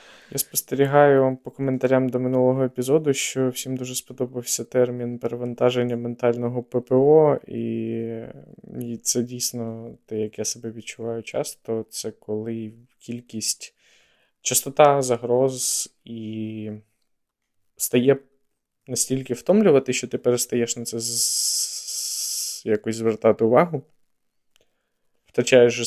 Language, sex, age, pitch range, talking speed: Ukrainian, male, 20-39, 115-135 Hz, 105 wpm